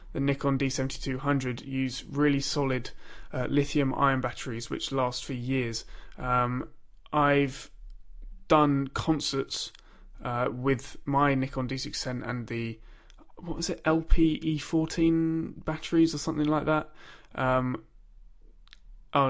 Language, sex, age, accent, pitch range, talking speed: English, male, 20-39, British, 125-150 Hz, 110 wpm